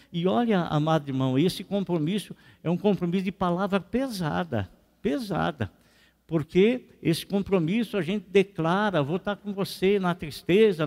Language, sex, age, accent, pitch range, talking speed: Portuguese, male, 60-79, Brazilian, 165-225 Hz, 140 wpm